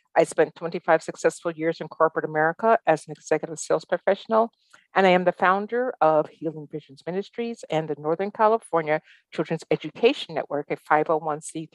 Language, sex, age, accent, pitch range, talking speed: English, female, 50-69, American, 150-210 Hz, 160 wpm